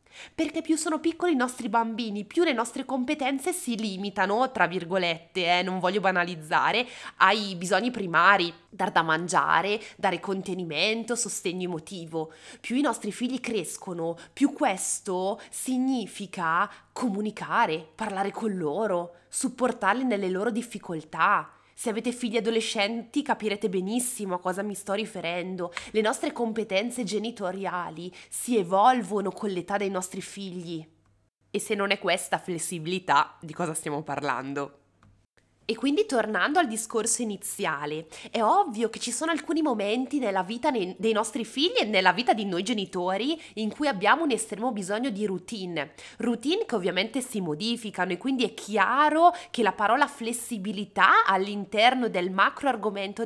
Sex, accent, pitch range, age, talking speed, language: female, native, 180-240 Hz, 20-39, 140 wpm, Italian